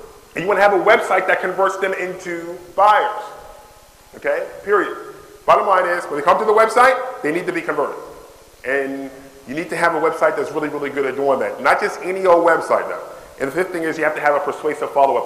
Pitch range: 135-200 Hz